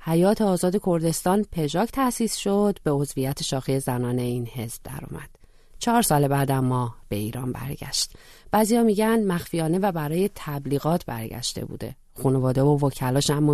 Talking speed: 140 wpm